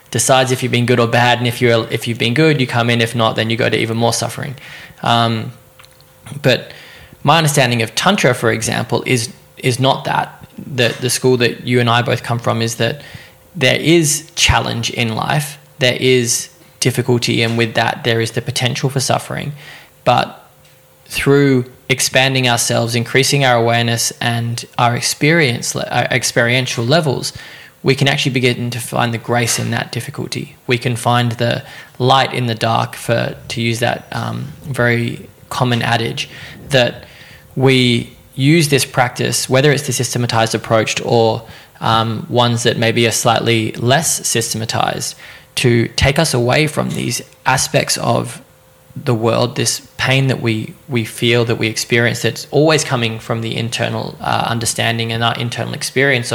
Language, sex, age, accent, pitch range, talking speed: English, male, 20-39, Australian, 115-130 Hz, 165 wpm